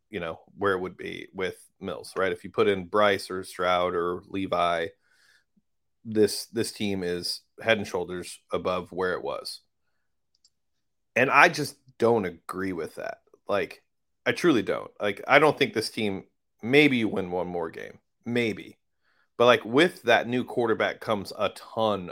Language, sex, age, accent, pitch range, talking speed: English, male, 30-49, American, 100-140 Hz, 170 wpm